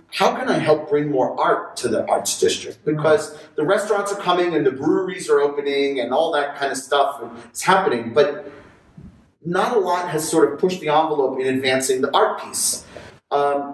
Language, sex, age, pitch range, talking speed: English, male, 40-59, 130-195 Hz, 195 wpm